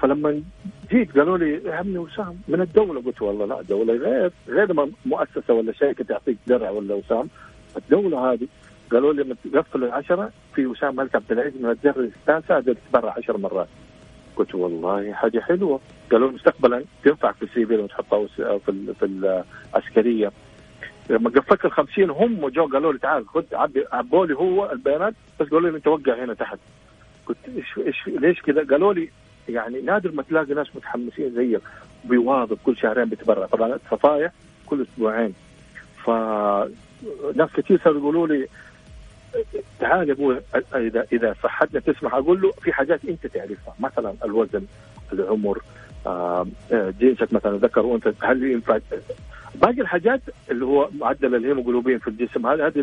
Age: 50-69